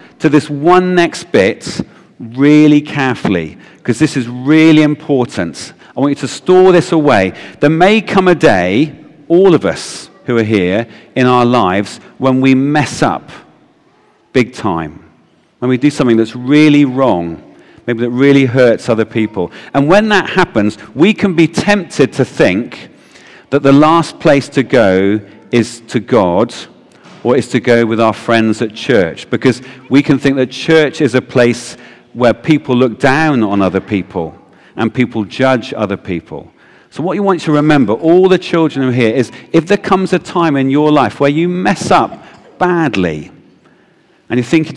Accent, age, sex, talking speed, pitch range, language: British, 40-59, male, 175 wpm, 115-150 Hz, English